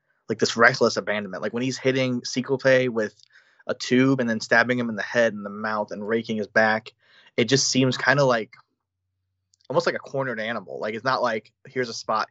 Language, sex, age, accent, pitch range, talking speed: English, male, 20-39, American, 110-125 Hz, 220 wpm